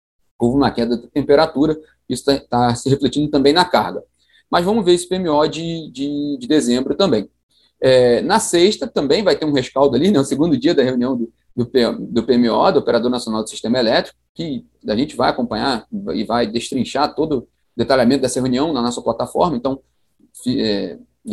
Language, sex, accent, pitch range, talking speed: Portuguese, male, Brazilian, 120-160 Hz, 190 wpm